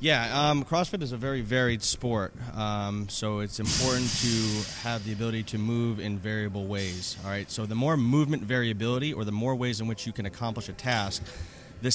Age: 30-49